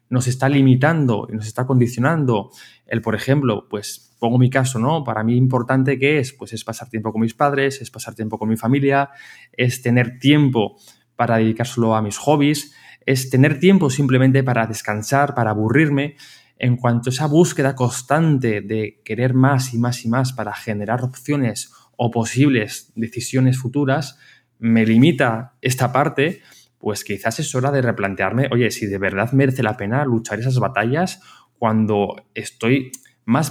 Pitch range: 115-135 Hz